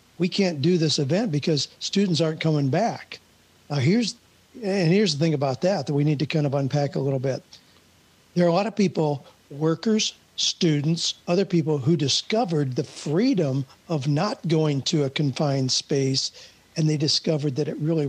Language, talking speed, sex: English, 180 wpm, male